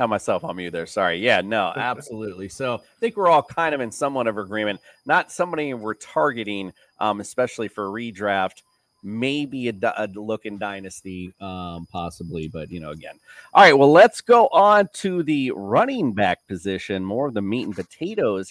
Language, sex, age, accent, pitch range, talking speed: English, male, 30-49, American, 105-135 Hz, 180 wpm